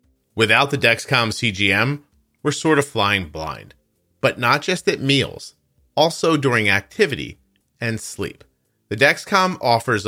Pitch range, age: 100-140 Hz, 40-59